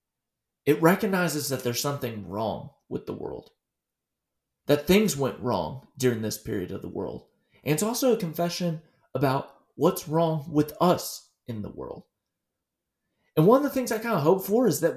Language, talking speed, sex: English, 175 wpm, male